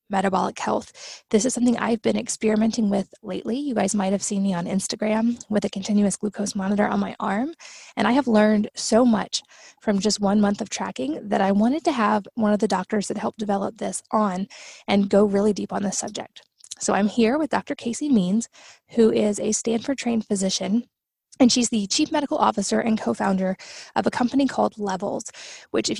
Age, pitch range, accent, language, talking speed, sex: 20-39, 205-245 Hz, American, English, 200 wpm, female